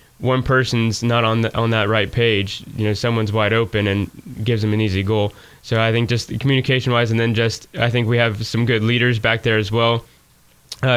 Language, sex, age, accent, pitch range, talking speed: English, male, 10-29, American, 110-120 Hz, 225 wpm